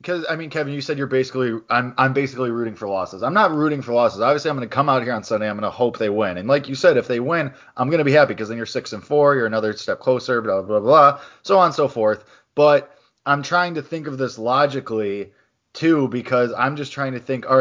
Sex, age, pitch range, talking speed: male, 20-39, 110-140 Hz, 275 wpm